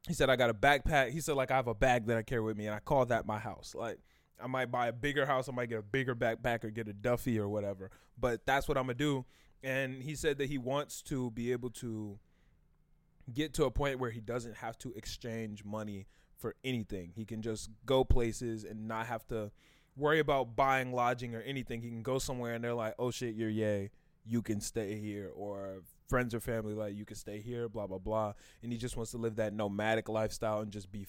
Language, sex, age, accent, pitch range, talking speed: English, male, 20-39, American, 110-130 Hz, 245 wpm